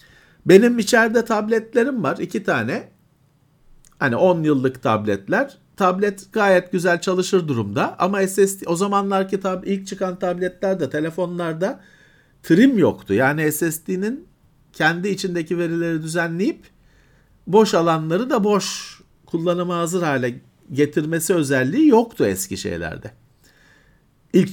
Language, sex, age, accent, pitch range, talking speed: Turkish, male, 50-69, native, 140-195 Hz, 110 wpm